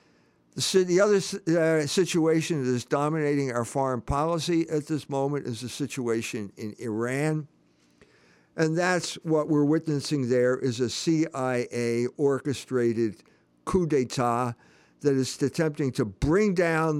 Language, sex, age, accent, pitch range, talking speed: English, male, 50-69, American, 125-160 Hz, 125 wpm